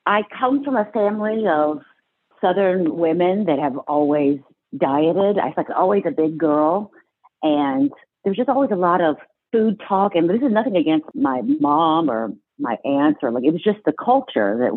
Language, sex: English, female